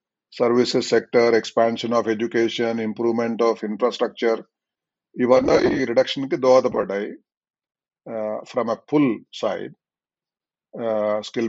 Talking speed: 110 wpm